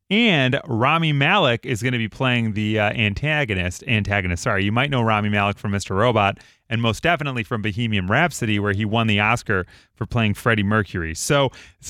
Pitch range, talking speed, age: 105-145 Hz, 190 wpm, 30-49